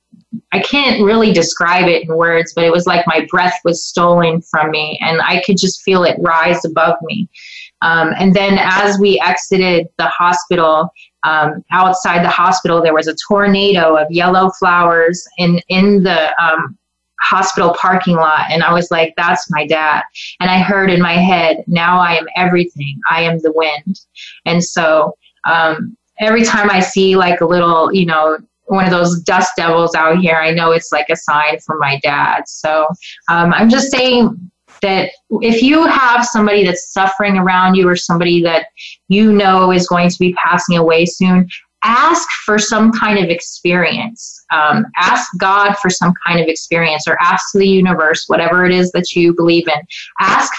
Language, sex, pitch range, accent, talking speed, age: English, female, 165-195 Hz, American, 180 wpm, 20-39